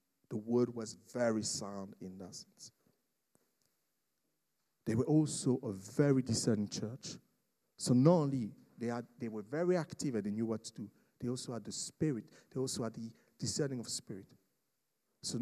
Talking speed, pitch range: 165 wpm, 120-165 Hz